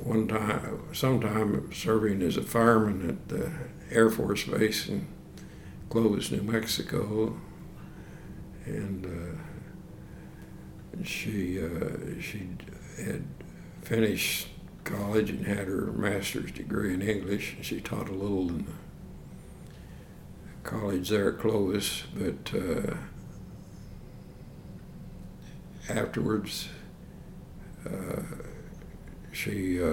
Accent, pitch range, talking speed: American, 95-110 Hz, 95 wpm